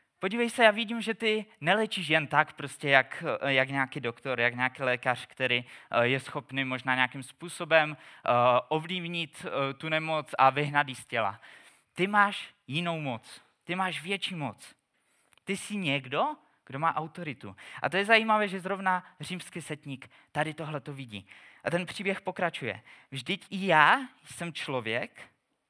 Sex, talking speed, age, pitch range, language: male, 150 wpm, 20-39, 135-180 Hz, Czech